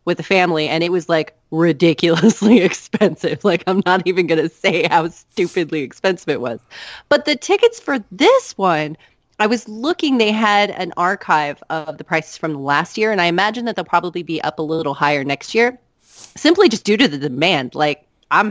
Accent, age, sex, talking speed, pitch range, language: American, 30-49, female, 195 wpm, 165-220 Hz, English